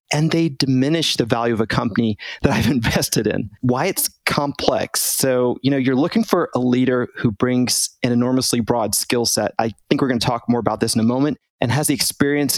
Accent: American